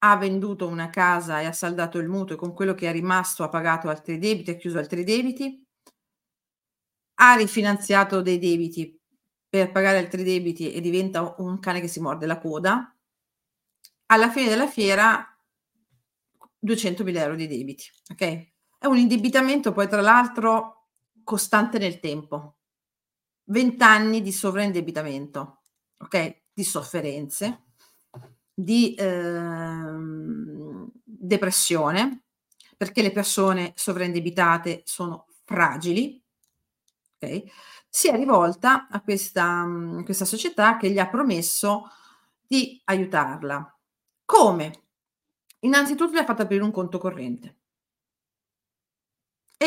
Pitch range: 165-220 Hz